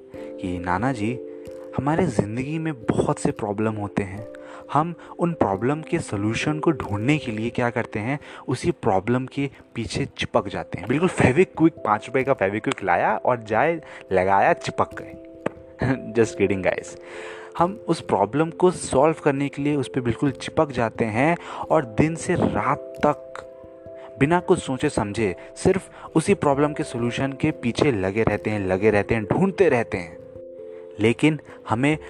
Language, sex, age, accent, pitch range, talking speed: Hindi, male, 30-49, native, 105-150 Hz, 160 wpm